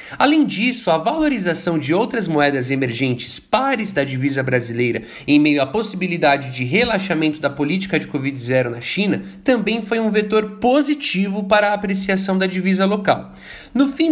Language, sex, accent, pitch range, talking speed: Portuguese, male, Brazilian, 160-220 Hz, 155 wpm